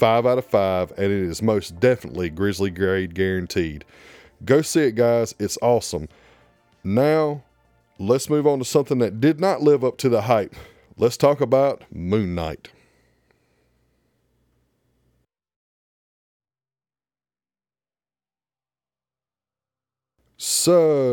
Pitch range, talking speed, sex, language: 100-130 Hz, 110 wpm, male, English